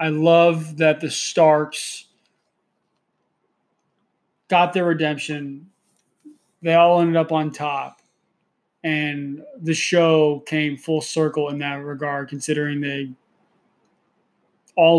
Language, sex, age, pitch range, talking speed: English, male, 20-39, 145-160 Hz, 105 wpm